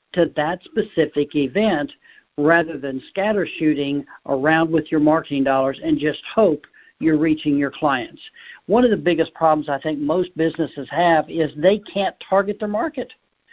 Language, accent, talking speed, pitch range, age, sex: English, American, 160 wpm, 155-210 Hz, 60-79, male